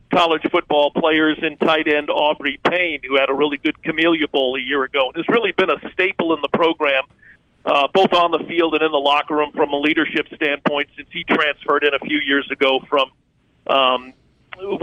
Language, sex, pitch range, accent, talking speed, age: English, male, 145-170 Hz, American, 200 wpm, 50-69